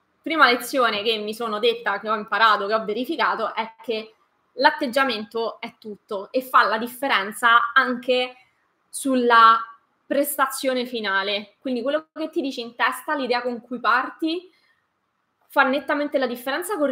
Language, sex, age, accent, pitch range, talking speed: Italian, female, 20-39, native, 220-265 Hz, 145 wpm